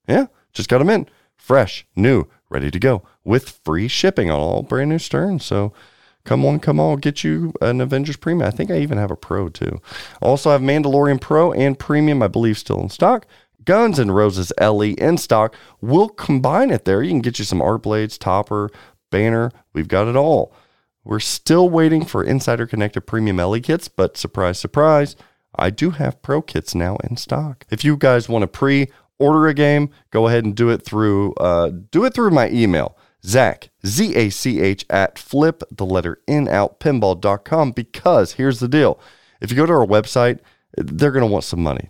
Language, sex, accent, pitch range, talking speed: English, male, American, 105-145 Hz, 195 wpm